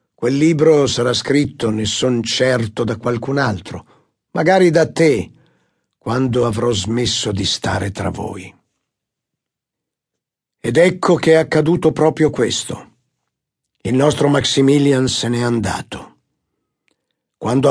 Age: 50-69